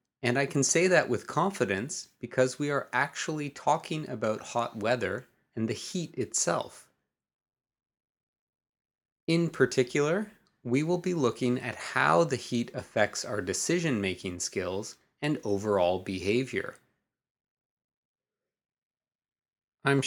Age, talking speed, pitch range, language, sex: 30-49, 110 wpm, 105-140 Hz, English, male